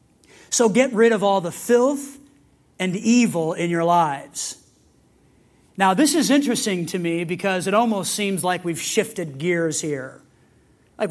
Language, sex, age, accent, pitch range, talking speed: English, male, 40-59, American, 180-240 Hz, 150 wpm